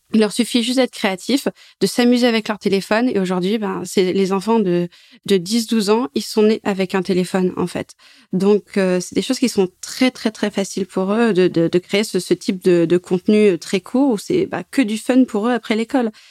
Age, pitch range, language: 20-39, 185-230 Hz, French